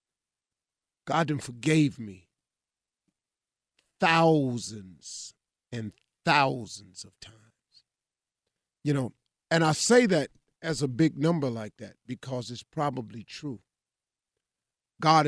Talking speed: 100 wpm